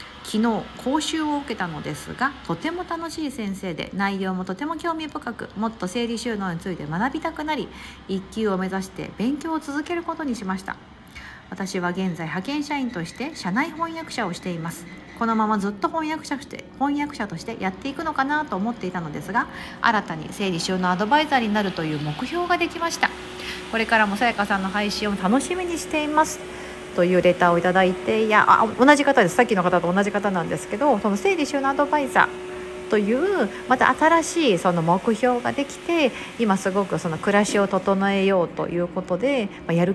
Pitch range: 185-280 Hz